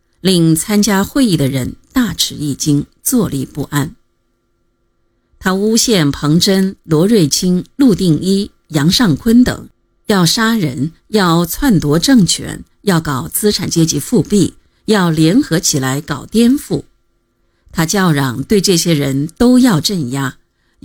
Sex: female